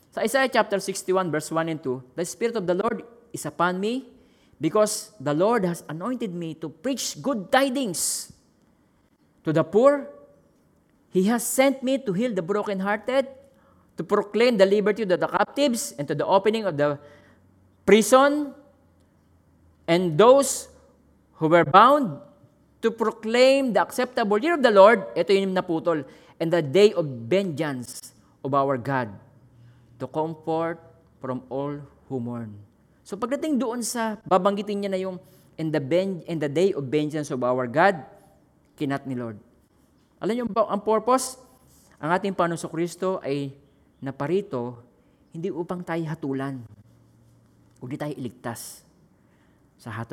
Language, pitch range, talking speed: Filipino, 135-210 Hz, 145 wpm